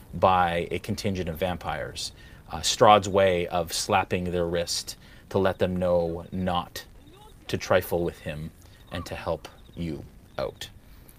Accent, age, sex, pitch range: American, 30-49, male, 80-105 Hz